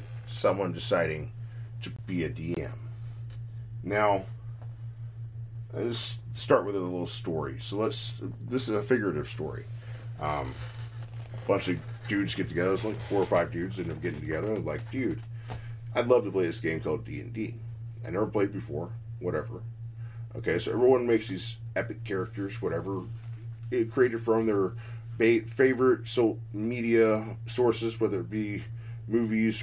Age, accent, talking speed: 40-59, American, 150 wpm